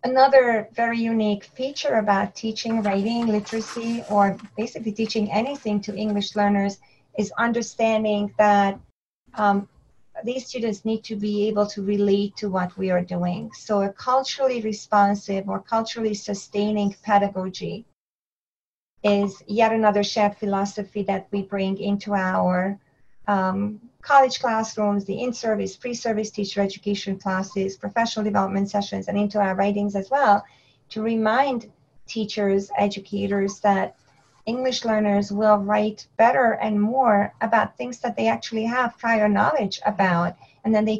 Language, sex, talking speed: English, female, 135 wpm